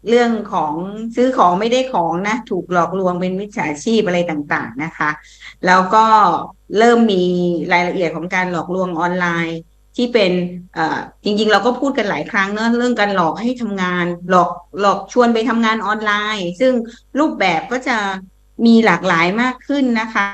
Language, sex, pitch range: English, female, 180-235 Hz